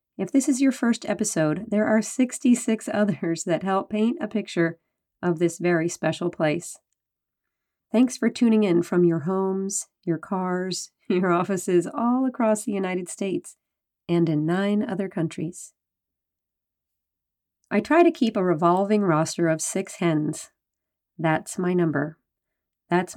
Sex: female